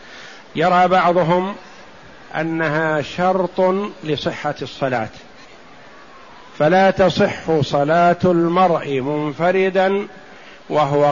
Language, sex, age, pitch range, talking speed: Arabic, male, 50-69, 150-185 Hz, 65 wpm